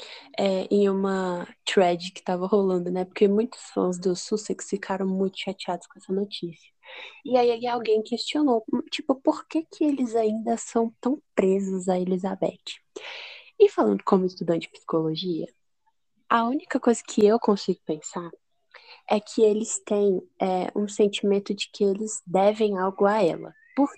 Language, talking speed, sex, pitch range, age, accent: Portuguese, 155 wpm, female, 185-235 Hz, 10-29, Brazilian